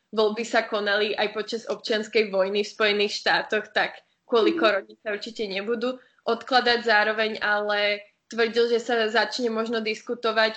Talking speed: 140 wpm